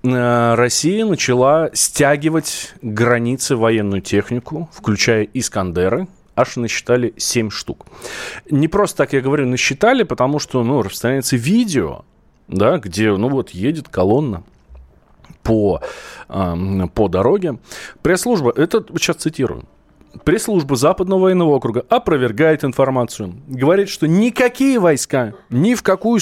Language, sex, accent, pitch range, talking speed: Russian, male, native, 105-150 Hz, 110 wpm